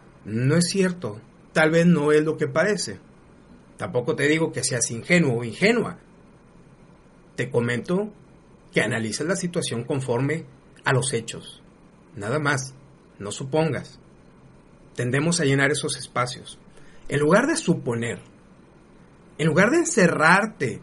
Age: 40-59